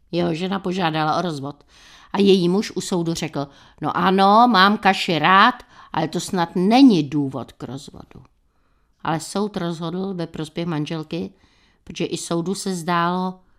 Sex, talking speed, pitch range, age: female, 150 wpm, 155-195 Hz, 50-69